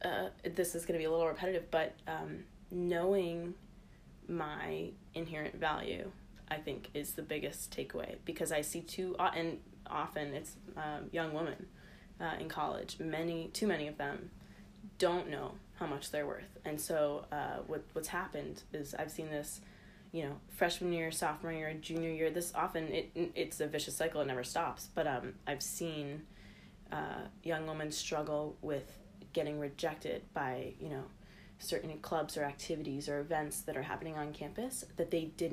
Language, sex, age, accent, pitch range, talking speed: English, female, 20-39, American, 150-175 Hz, 170 wpm